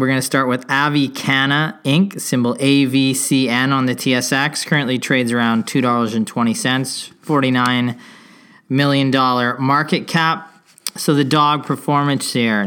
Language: English